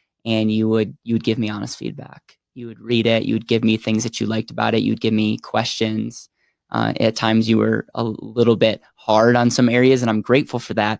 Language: English